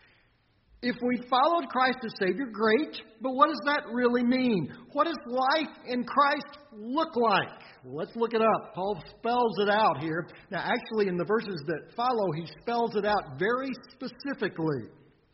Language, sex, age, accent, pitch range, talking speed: English, male, 50-69, American, 160-240 Hz, 165 wpm